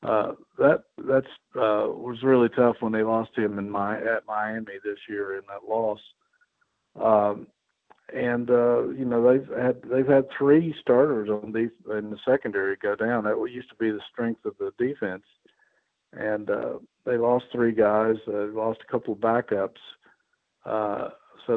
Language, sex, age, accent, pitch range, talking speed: English, male, 50-69, American, 105-120 Hz, 175 wpm